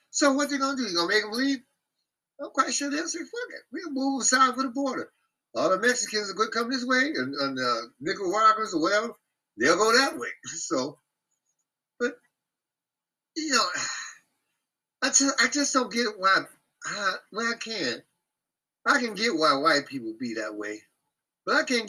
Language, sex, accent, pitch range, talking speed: English, male, American, 205-290 Hz, 195 wpm